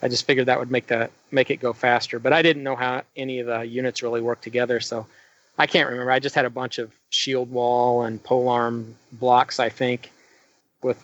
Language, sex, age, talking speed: English, male, 30-49, 225 wpm